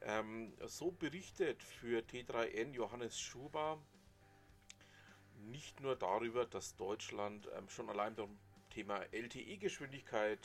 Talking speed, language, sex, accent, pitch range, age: 105 wpm, German, male, German, 100-135 Hz, 40-59